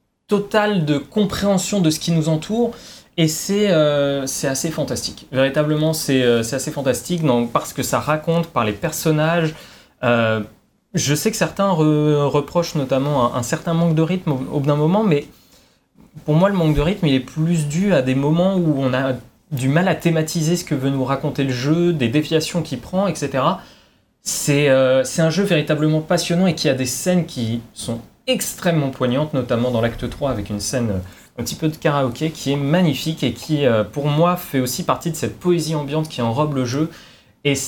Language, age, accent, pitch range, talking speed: French, 20-39, French, 125-160 Hz, 200 wpm